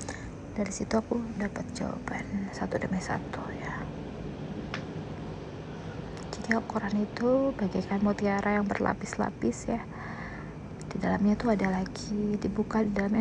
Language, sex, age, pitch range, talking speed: Indonesian, female, 20-39, 200-225 Hz, 115 wpm